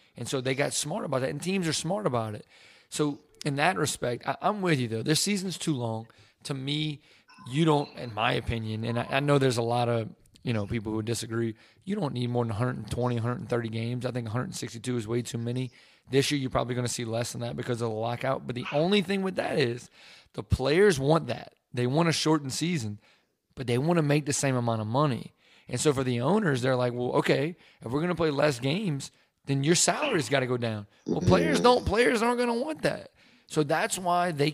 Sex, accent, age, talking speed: male, American, 30-49, 235 wpm